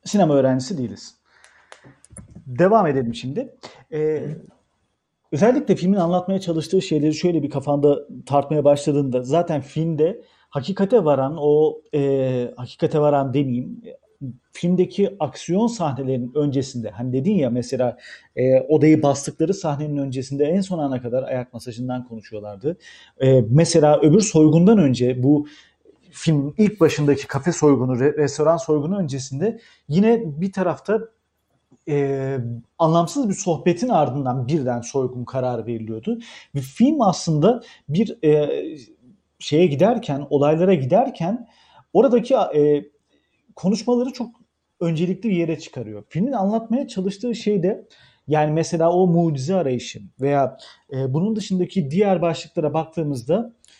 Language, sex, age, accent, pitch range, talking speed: Turkish, male, 40-59, native, 135-185 Hz, 120 wpm